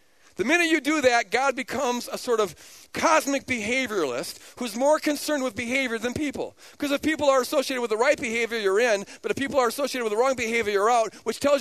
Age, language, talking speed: 50-69, English, 220 wpm